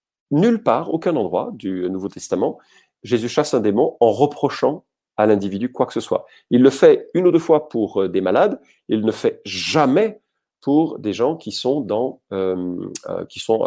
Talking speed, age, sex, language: 185 wpm, 40-59, male, French